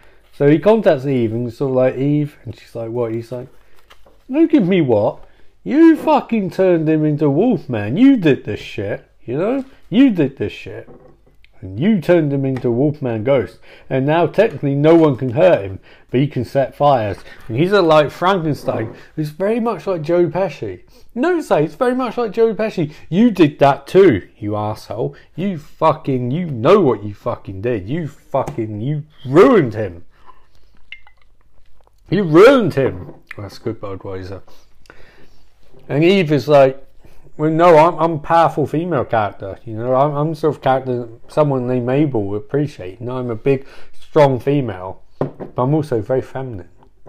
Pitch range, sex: 110-155 Hz, male